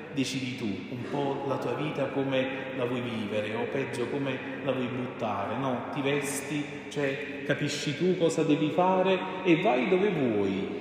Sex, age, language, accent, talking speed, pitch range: male, 40-59, Italian, native, 165 wpm, 125-160 Hz